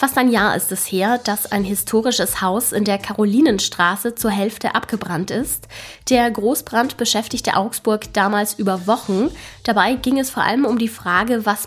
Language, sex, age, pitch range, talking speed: German, female, 10-29, 195-240 Hz, 170 wpm